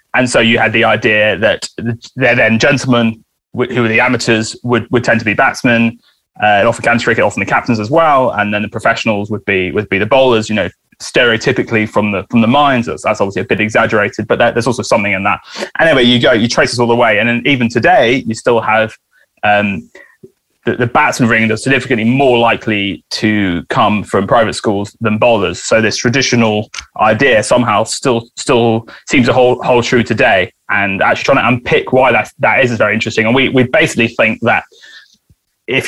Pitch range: 110-125 Hz